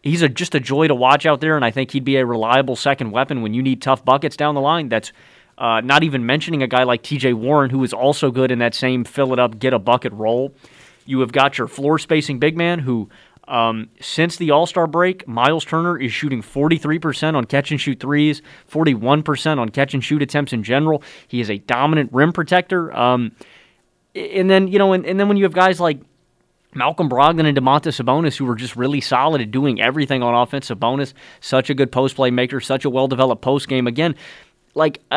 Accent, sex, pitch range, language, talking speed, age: American, male, 130-155 Hz, English, 195 wpm, 30-49